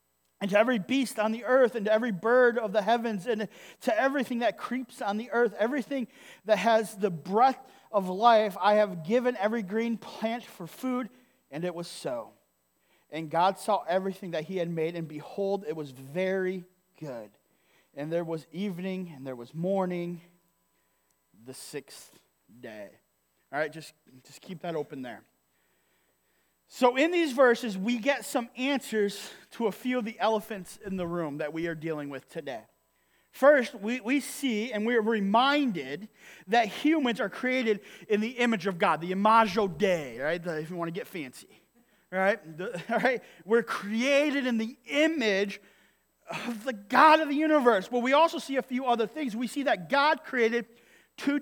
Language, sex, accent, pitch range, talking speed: English, male, American, 175-245 Hz, 175 wpm